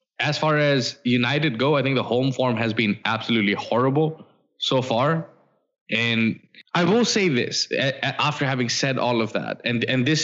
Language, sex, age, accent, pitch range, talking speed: English, male, 10-29, Indian, 115-140 Hz, 175 wpm